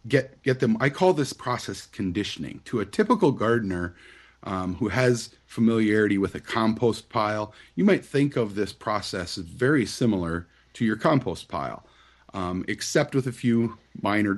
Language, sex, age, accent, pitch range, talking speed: English, male, 30-49, American, 90-115 Hz, 165 wpm